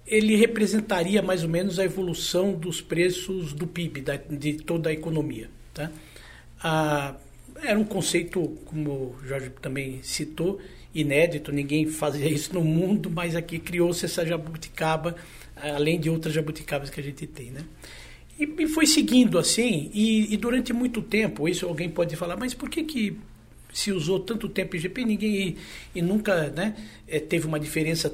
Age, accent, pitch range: 60-79, Brazilian, 155-210 Hz